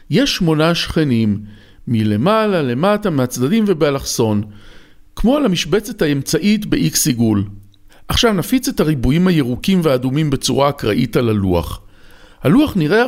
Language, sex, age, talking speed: Hebrew, male, 50-69, 110 wpm